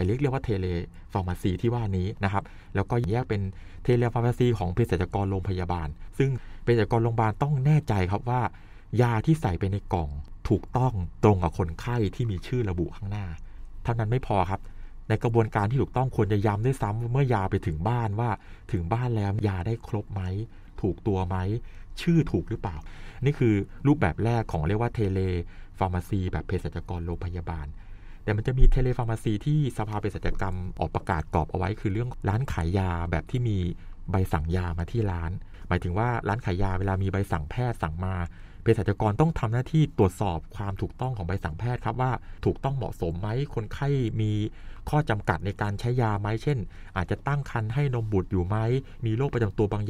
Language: Thai